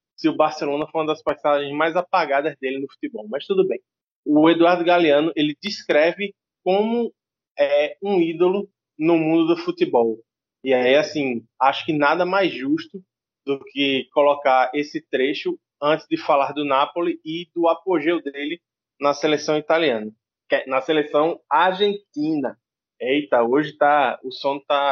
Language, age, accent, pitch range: Portuguese, 20-39, Brazilian, 140-175 Hz